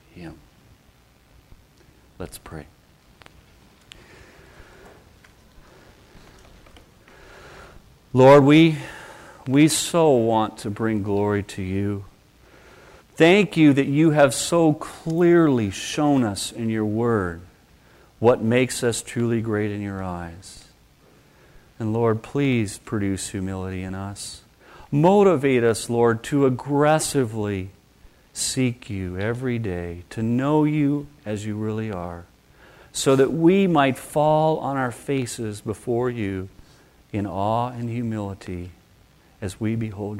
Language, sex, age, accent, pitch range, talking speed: English, male, 50-69, American, 100-135 Hz, 110 wpm